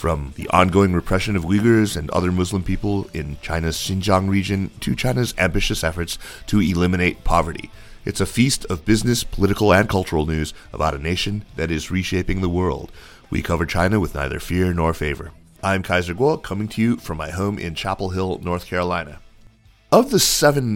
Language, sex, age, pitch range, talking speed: English, male, 30-49, 85-105 Hz, 180 wpm